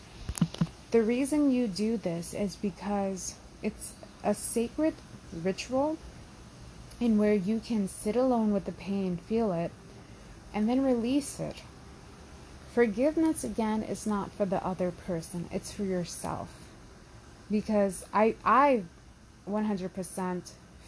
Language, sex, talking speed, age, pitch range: English, female, 120 wpm, 30-49, 175-225 Hz